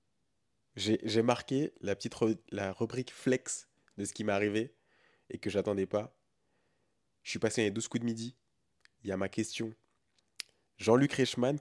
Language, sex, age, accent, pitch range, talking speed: French, male, 20-39, French, 95-125 Hz, 170 wpm